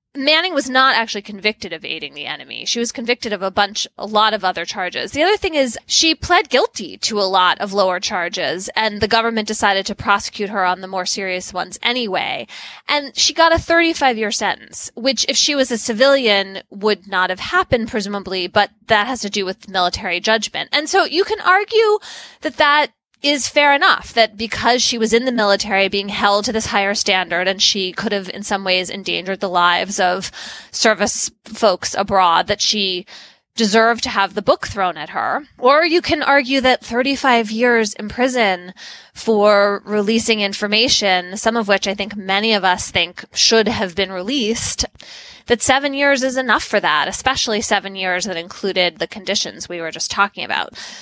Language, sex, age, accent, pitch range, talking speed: English, female, 20-39, American, 195-260 Hz, 190 wpm